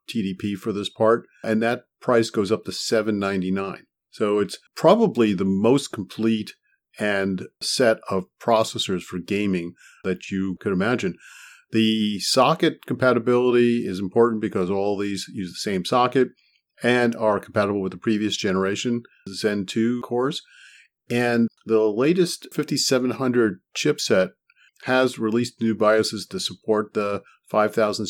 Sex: male